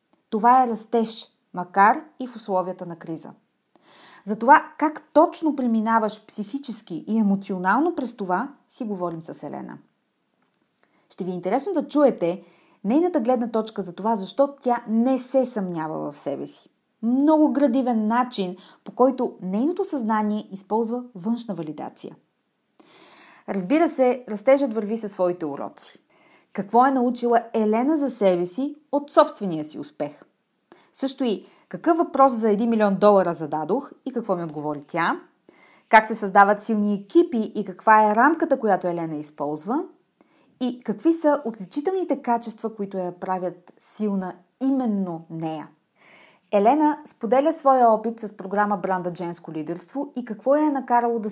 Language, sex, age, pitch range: Bulgarian, female, 30-49, 190-265 Hz